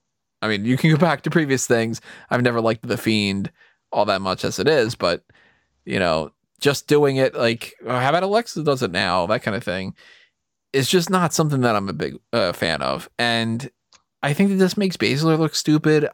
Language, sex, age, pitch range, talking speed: English, male, 20-39, 115-160 Hz, 215 wpm